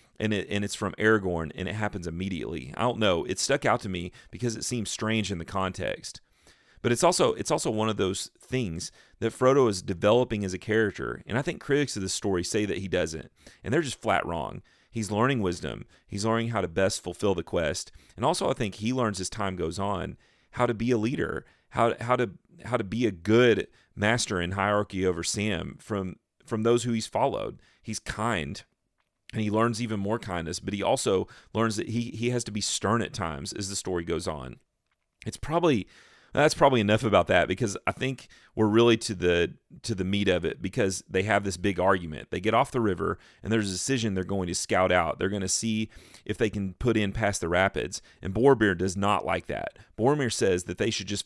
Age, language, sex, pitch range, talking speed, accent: 40-59, English, male, 95-115 Hz, 220 wpm, American